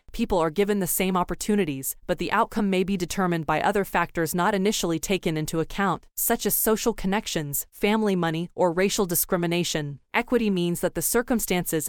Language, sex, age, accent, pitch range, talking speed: English, female, 20-39, American, 170-205 Hz, 170 wpm